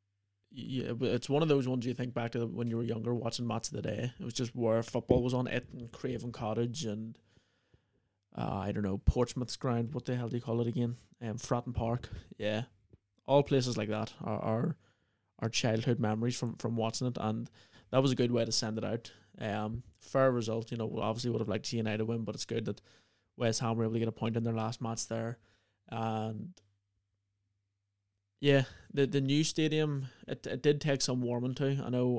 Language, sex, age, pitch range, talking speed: English, male, 20-39, 105-125 Hz, 220 wpm